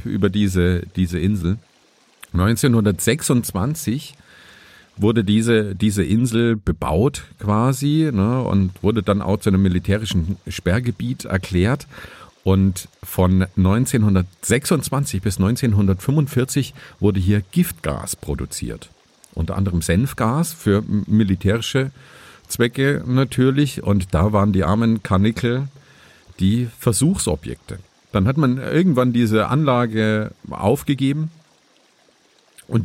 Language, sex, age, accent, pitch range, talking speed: German, male, 50-69, German, 95-130 Hz, 95 wpm